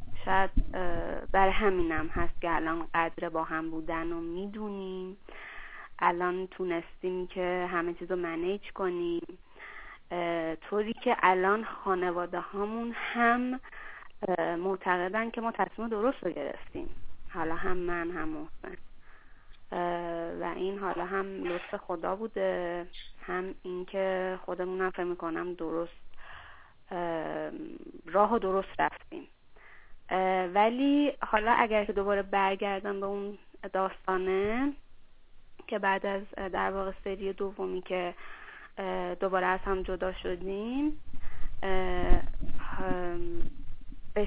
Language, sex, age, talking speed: Persian, female, 30-49, 105 wpm